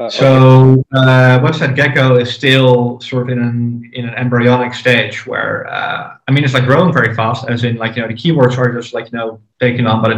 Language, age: English, 20-39